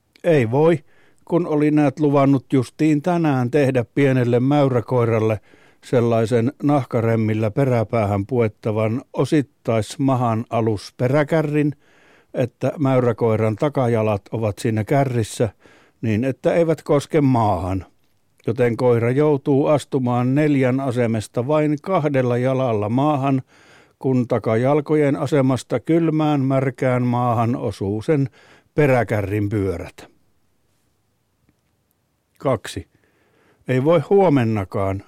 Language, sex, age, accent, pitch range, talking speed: Finnish, male, 60-79, native, 115-145 Hz, 90 wpm